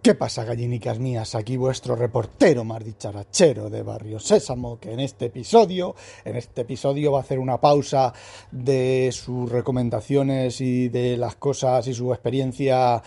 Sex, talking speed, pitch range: male, 155 wpm, 120-140 Hz